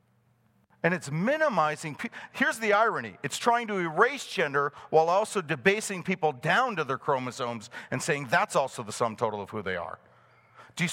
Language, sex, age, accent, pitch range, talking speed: English, male, 50-69, American, 145-215 Hz, 180 wpm